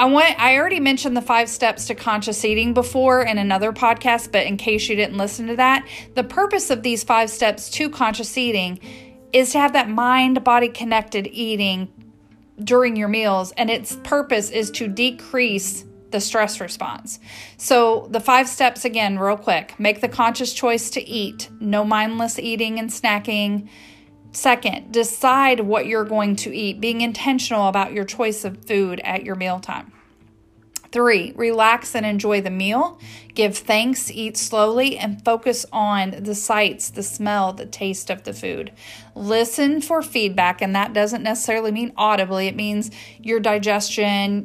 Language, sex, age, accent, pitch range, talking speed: English, female, 40-59, American, 205-245 Hz, 165 wpm